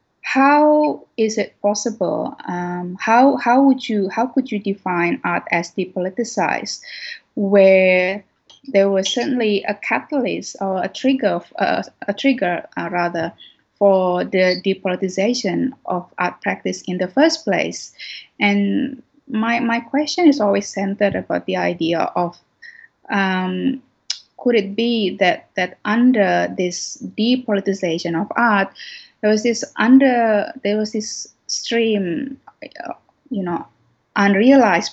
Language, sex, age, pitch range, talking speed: English, female, 20-39, 185-240 Hz, 125 wpm